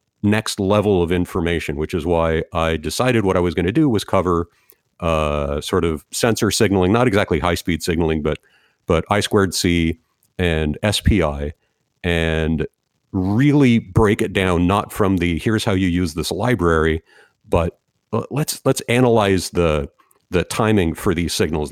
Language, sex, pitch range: English, male, 85-105 Hz